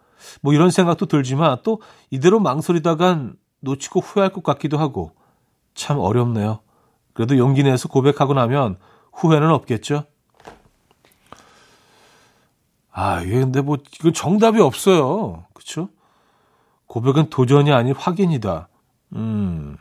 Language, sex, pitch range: Korean, male, 120-155 Hz